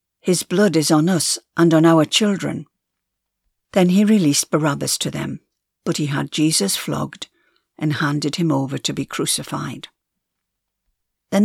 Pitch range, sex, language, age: 150-175 Hz, female, English, 60-79